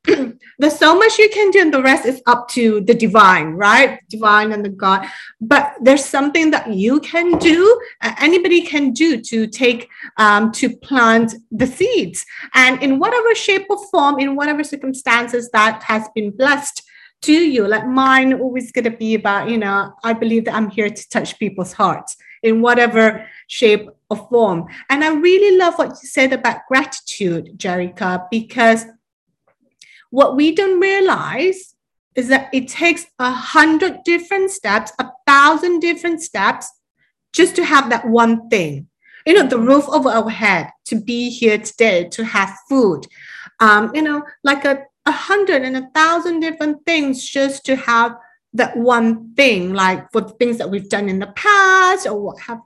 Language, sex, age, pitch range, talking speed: English, female, 30-49, 225-315 Hz, 175 wpm